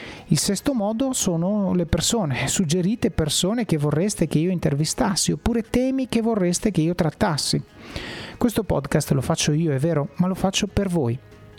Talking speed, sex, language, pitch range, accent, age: 165 wpm, male, Italian, 145-205 Hz, native, 30-49